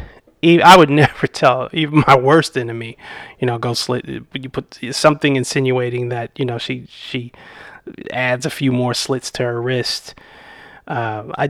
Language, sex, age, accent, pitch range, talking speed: English, male, 30-49, American, 120-145 Hz, 160 wpm